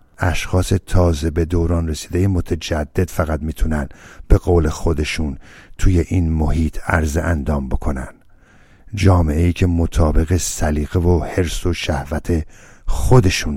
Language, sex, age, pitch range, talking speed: Persian, male, 50-69, 75-90 Hz, 120 wpm